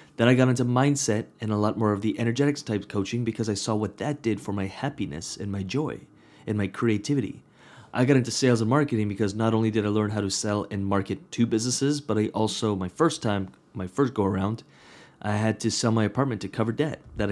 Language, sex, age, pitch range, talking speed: English, male, 30-49, 100-125 Hz, 235 wpm